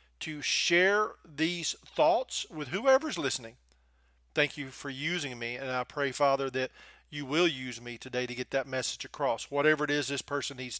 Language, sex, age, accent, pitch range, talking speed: English, male, 40-59, American, 130-160 Hz, 185 wpm